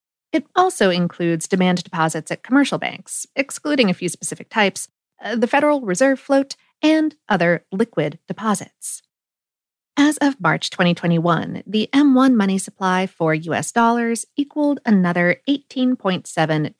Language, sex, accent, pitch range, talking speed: English, female, American, 170-265 Hz, 130 wpm